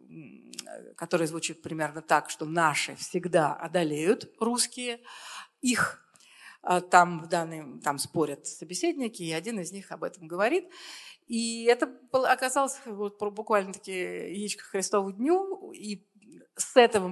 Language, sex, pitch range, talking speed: Russian, female, 170-225 Hz, 110 wpm